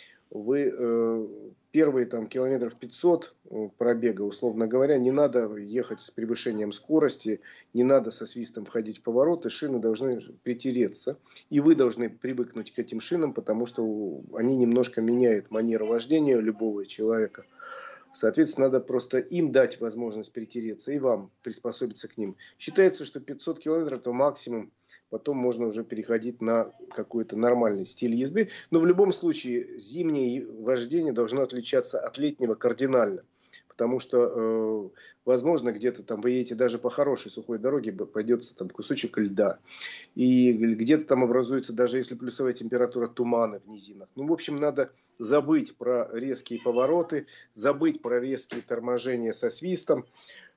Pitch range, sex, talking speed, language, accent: 115-140 Hz, male, 140 wpm, Russian, native